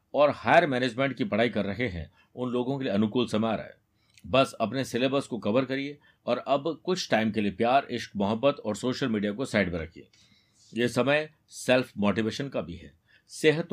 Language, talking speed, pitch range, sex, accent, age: Hindi, 205 wpm, 105-135 Hz, male, native, 60-79